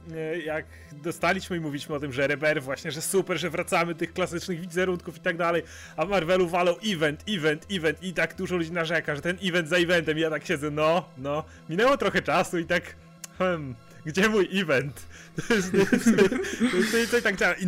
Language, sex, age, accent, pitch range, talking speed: Polish, male, 30-49, native, 155-195 Hz, 175 wpm